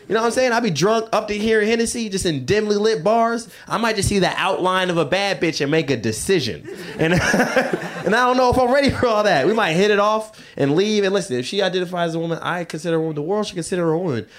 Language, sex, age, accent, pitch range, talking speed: English, male, 20-39, American, 125-190 Hz, 285 wpm